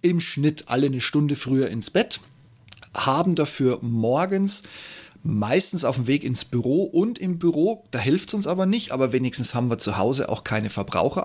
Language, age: German, 30-49